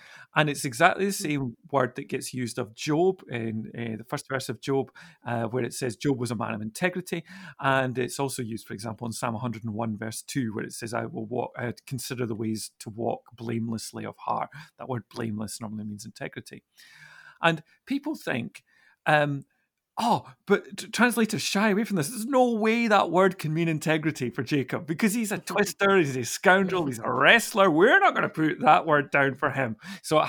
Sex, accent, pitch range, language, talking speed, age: male, British, 125-175 Hz, English, 200 wpm, 40-59